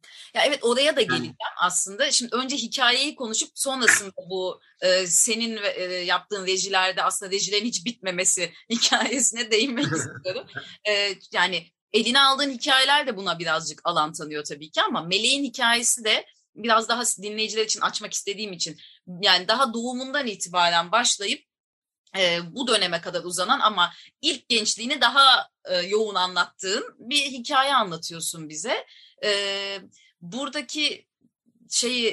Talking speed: 125 wpm